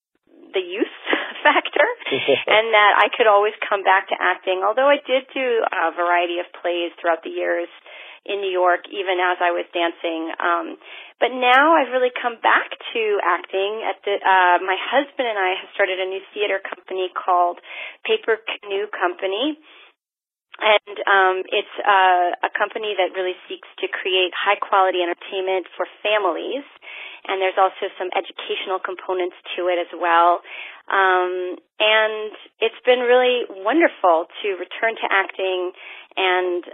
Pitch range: 180-245 Hz